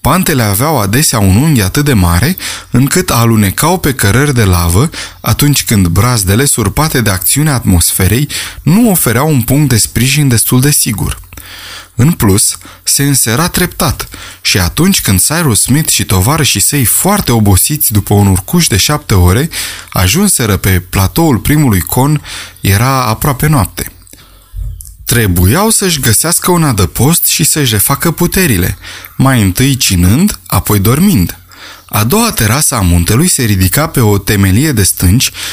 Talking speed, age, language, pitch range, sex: 145 wpm, 20-39, Romanian, 100-145 Hz, male